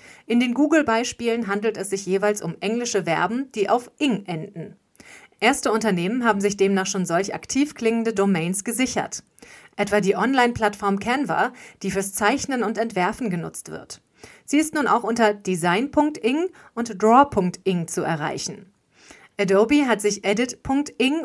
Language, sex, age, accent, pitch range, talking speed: German, female, 40-59, German, 190-235 Hz, 140 wpm